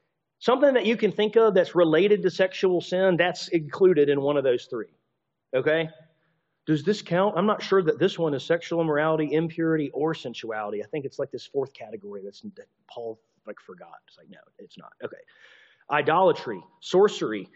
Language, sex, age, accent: English, male, 40-59, American